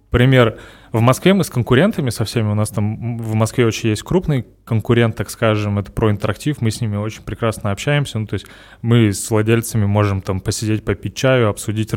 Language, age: Russian, 20-39